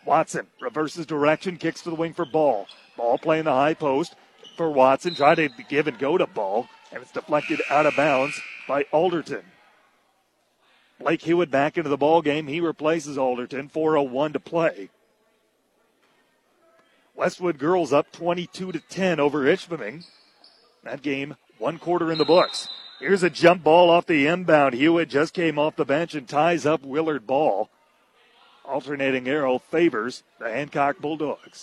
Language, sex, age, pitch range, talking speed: English, male, 40-59, 145-170 Hz, 155 wpm